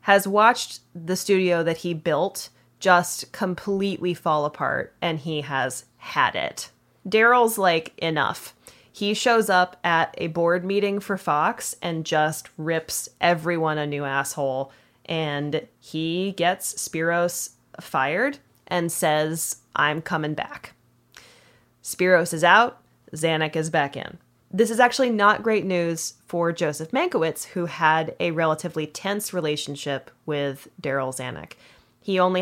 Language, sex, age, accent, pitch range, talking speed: English, female, 20-39, American, 150-190 Hz, 135 wpm